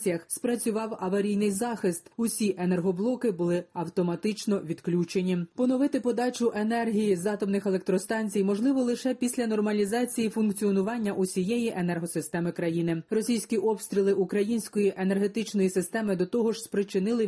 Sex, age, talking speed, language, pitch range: female, 30-49, 110 wpm, Ukrainian, 195-230 Hz